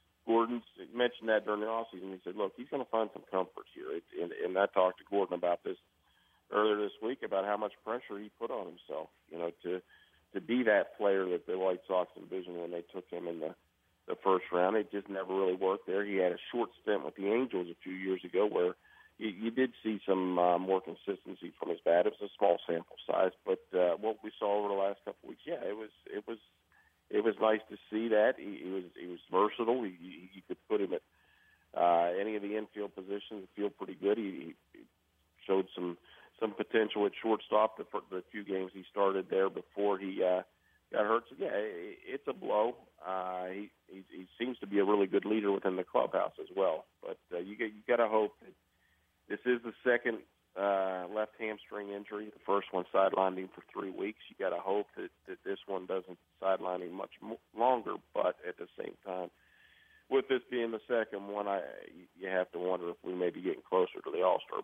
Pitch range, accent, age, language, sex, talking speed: 90-110 Hz, American, 50-69, English, male, 225 wpm